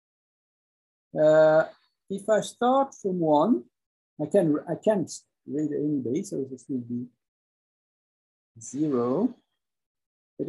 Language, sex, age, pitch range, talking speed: English, male, 60-79, 140-220 Hz, 110 wpm